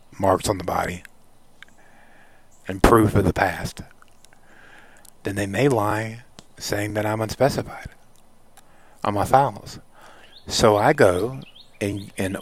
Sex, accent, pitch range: male, American, 95-110 Hz